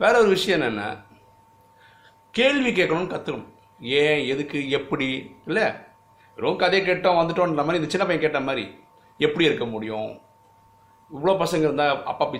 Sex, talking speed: male, 105 wpm